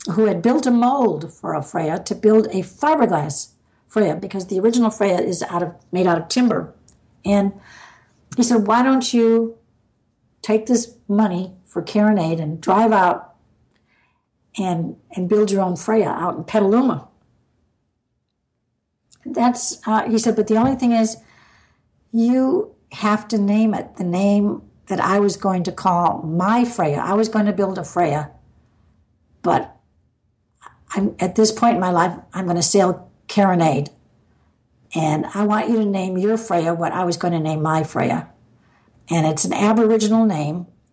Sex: female